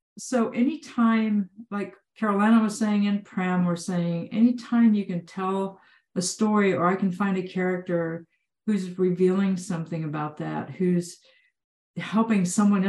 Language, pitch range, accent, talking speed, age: English, 170-205 Hz, American, 140 wpm, 50-69